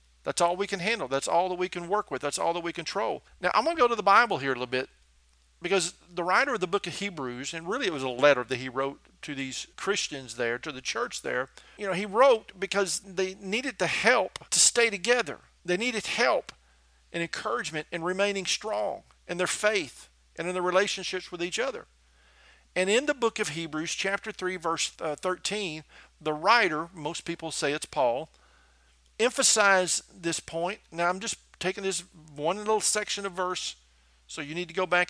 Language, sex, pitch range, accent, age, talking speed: English, male, 140-195 Hz, American, 50-69, 205 wpm